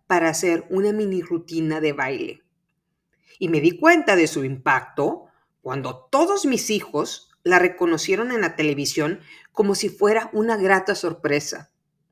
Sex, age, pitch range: female, 50-69, 160-230 Hz